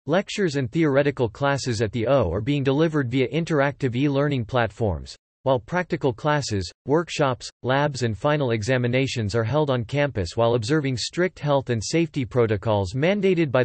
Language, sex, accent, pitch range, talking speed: English, male, American, 115-145 Hz, 160 wpm